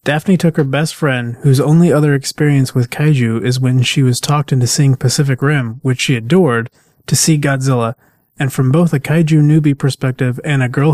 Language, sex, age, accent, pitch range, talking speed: English, male, 20-39, American, 125-150 Hz, 195 wpm